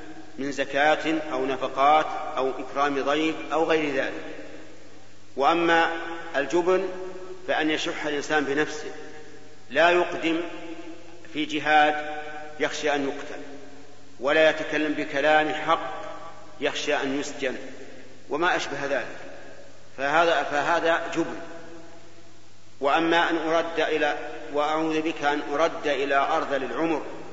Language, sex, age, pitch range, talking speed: Arabic, male, 50-69, 145-165 Hz, 105 wpm